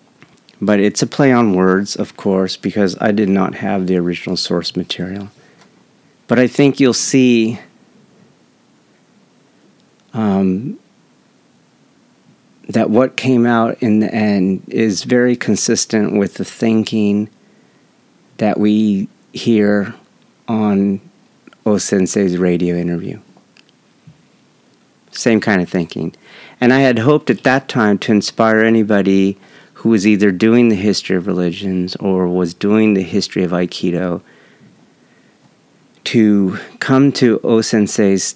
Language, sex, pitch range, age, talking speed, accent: English, male, 90-110 Hz, 50-69, 120 wpm, American